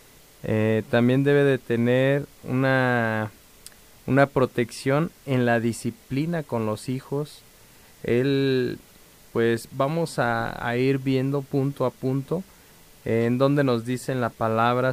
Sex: male